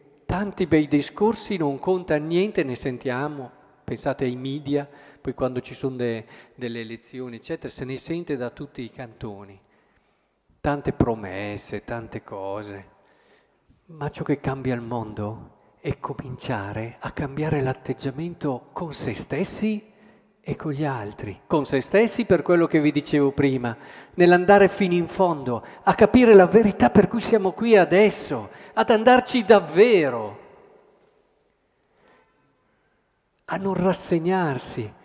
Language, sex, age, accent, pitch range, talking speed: Italian, male, 50-69, native, 125-180 Hz, 130 wpm